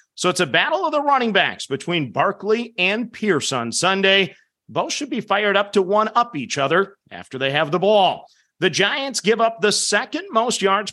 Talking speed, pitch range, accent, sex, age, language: 205 wpm, 165-215 Hz, American, male, 40-59, English